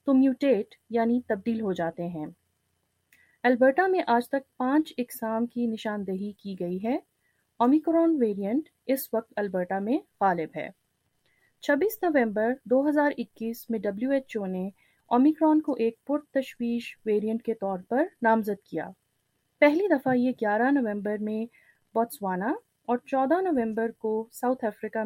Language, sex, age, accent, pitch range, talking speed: English, female, 30-49, Indian, 205-285 Hz, 135 wpm